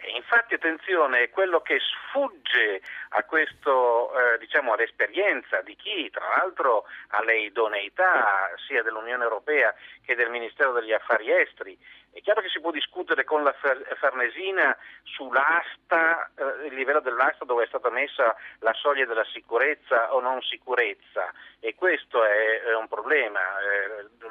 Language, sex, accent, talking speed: Italian, male, native, 145 wpm